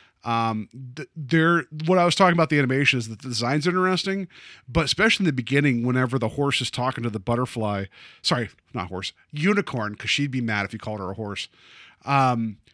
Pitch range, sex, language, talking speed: 120-145 Hz, male, English, 200 wpm